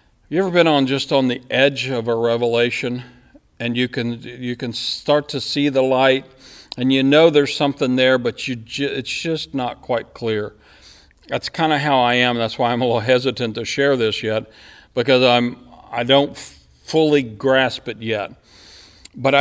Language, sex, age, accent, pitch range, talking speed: English, male, 50-69, American, 110-140 Hz, 190 wpm